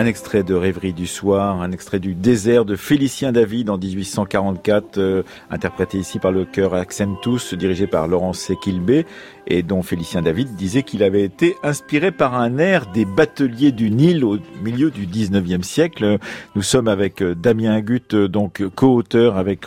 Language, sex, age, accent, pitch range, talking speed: French, male, 50-69, French, 95-120 Hz, 170 wpm